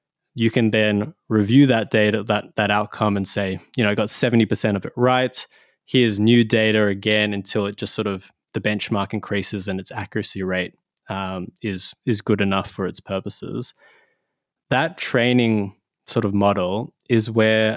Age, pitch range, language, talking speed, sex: 20-39, 105-125 Hz, English, 170 wpm, male